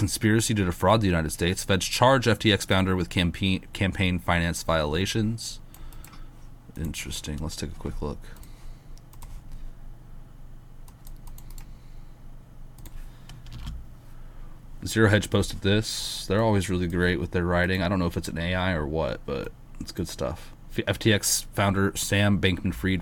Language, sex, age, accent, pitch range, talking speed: English, male, 30-49, American, 85-110 Hz, 130 wpm